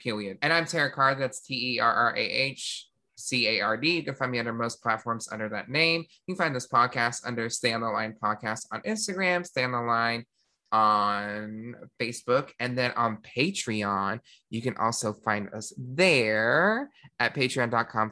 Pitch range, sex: 115-160 Hz, male